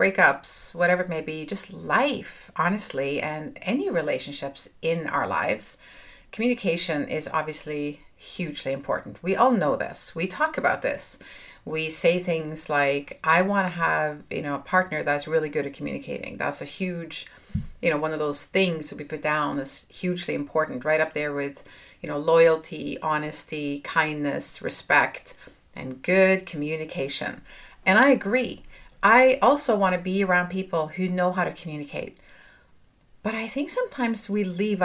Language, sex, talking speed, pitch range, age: English, female, 160 wpm, 155-205 Hz, 40-59